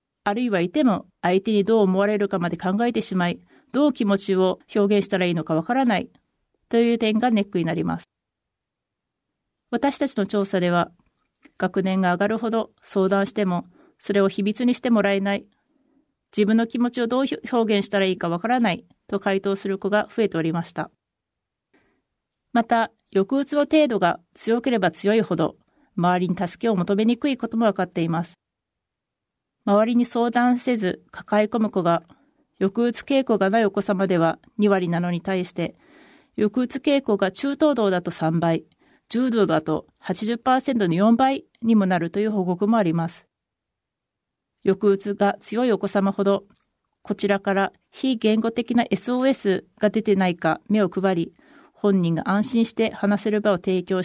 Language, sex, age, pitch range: Japanese, female, 40-59, 185-235 Hz